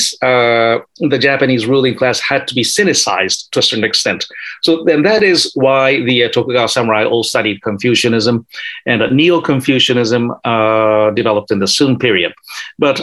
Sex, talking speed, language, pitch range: male, 165 wpm, English, 125-160 Hz